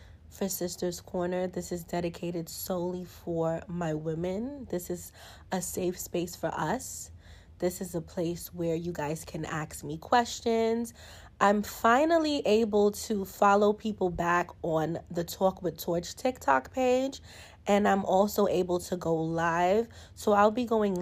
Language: English